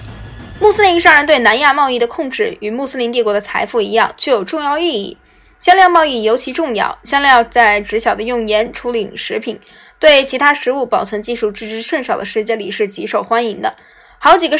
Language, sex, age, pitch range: Chinese, female, 10-29, 220-295 Hz